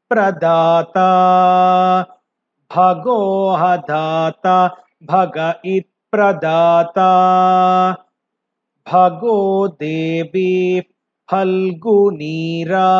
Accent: native